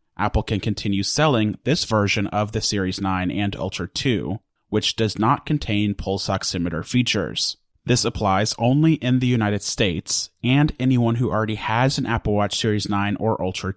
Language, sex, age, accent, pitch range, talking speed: English, male, 30-49, American, 100-120 Hz, 170 wpm